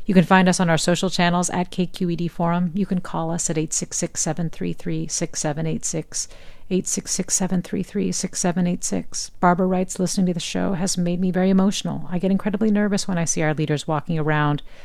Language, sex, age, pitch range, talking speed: English, female, 40-59, 145-185 Hz, 160 wpm